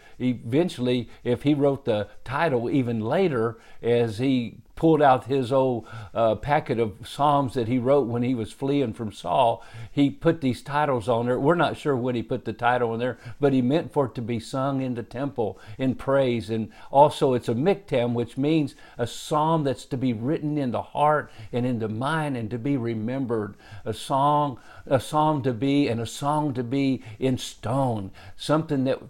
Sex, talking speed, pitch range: male, 195 wpm, 120-150 Hz